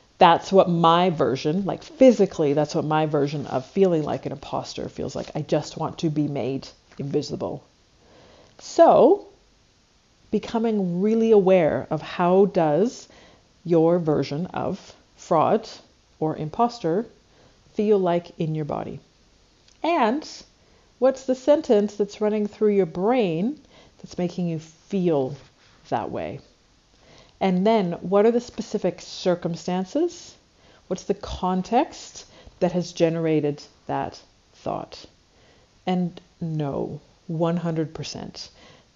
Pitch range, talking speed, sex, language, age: 160-215 Hz, 115 wpm, female, English, 50-69